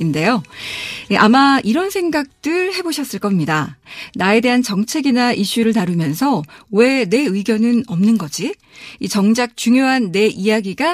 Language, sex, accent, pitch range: Korean, female, native, 190-275 Hz